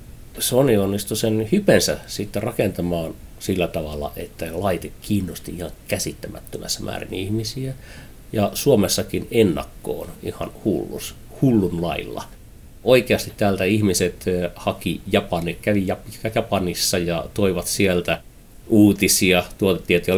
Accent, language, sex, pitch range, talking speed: native, Finnish, male, 95-115 Hz, 105 wpm